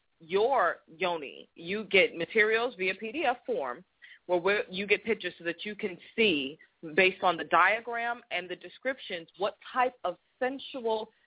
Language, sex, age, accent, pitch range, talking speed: English, female, 20-39, American, 155-205 Hz, 150 wpm